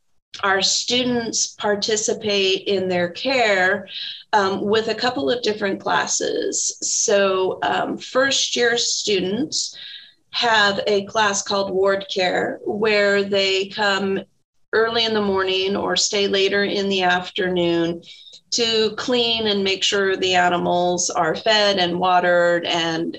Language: English